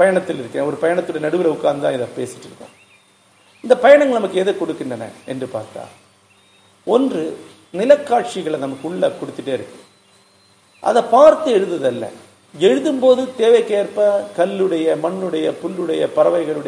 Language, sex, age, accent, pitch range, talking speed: Tamil, male, 50-69, native, 145-240 Hz, 45 wpm